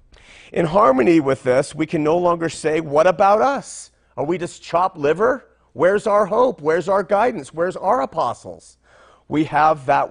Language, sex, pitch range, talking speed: English, male, 130-190 Hz, 170 wpm